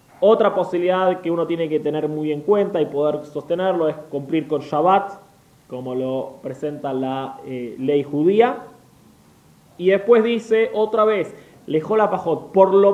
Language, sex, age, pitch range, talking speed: English, male, 20-39, 150-200 Hz, 150 wpm